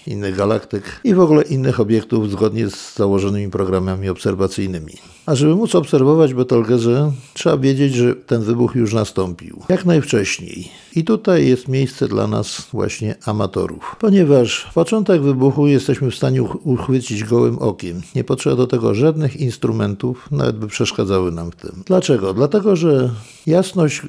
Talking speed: 150 wpm